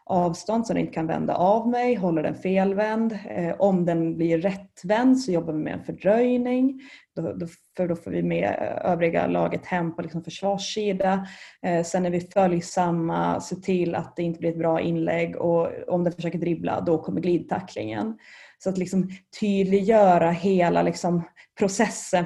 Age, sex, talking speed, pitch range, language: 30-49, female, 165 wpm, 165-190 Hz, Swedish